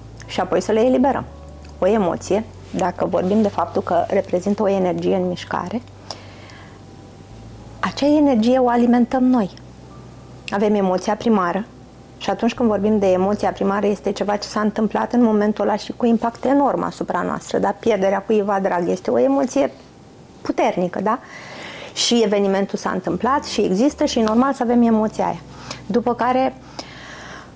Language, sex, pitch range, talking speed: Romanian, female, 185-240 Hz, 150 wpm